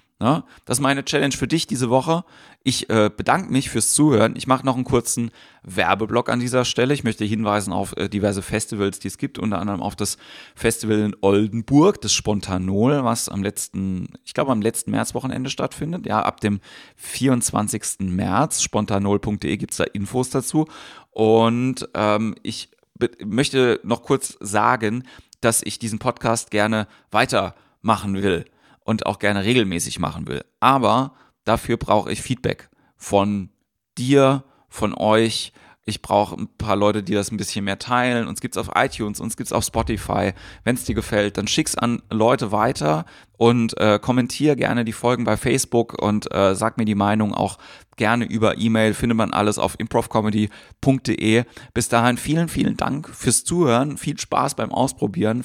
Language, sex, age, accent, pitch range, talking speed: German, male, 30-49, German, 100-125 Hz, 170 wpm